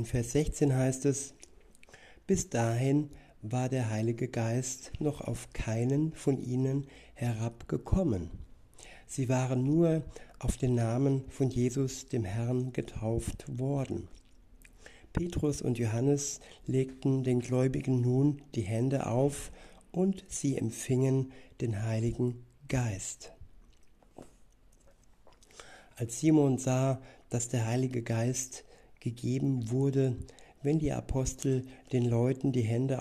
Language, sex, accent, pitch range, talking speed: German, male, German, 115-135 Hz, 110 wpm